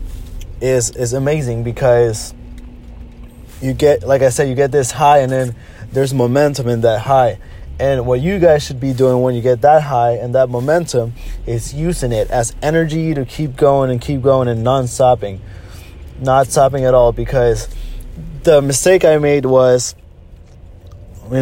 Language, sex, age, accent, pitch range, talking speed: English, male, 20-39, American, 120-145 Hz, 165 wpm